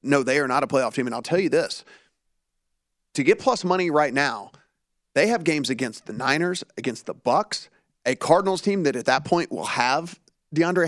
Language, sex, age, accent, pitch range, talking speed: English, male, 40-59, American, 135-170 Hz, 205 wpm